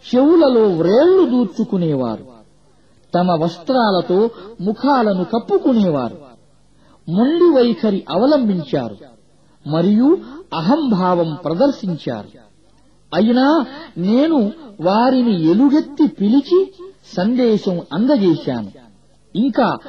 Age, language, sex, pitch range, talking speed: 50-69, Arabic, male, 175-275 Hz, 65 wpm